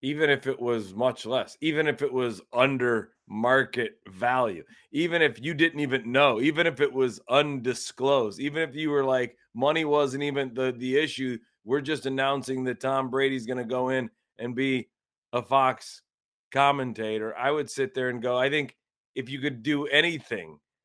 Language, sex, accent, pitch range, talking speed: English, male, American, 120-140 Hz, 180 wpm